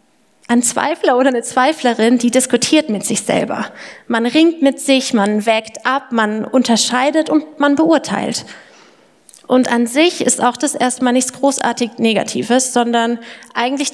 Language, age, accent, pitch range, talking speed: German, 30-49, German, 225-270 Hz, 145 wpm